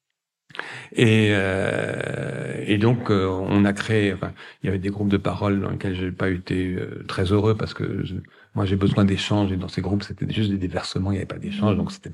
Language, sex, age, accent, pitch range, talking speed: French, male, 50-69, French, 95-115 Hz, 225 wpm